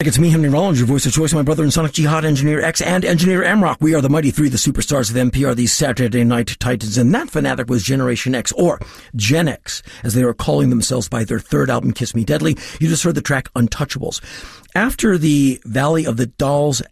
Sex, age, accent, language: male, 50-69, American, English